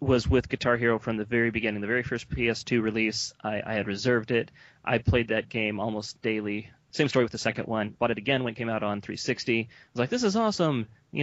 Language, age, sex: English, 30-49, male